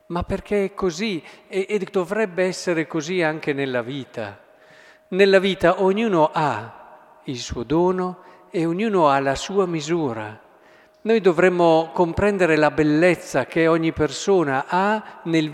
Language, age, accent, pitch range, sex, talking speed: Italian, 50-69, native, 160-205 Hz, male, 135 wpm